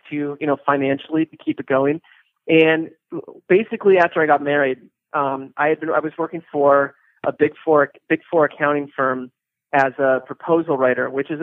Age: 30-49